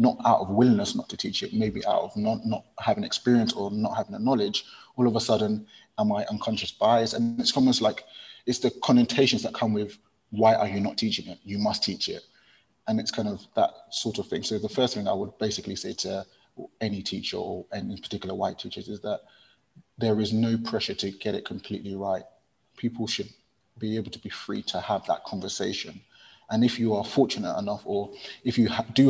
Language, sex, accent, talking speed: English, male, British, 215 wpm